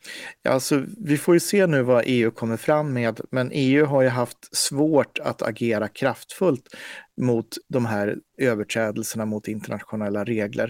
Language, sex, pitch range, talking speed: Swedish, male, 110-130 Hz, 155 wpm